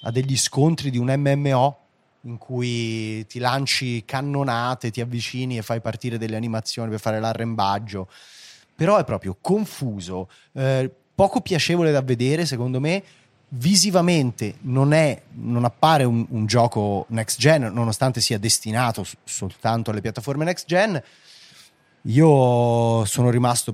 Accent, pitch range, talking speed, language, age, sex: native, 110-145 Hz, 135 wpm, Italian, 30-49, male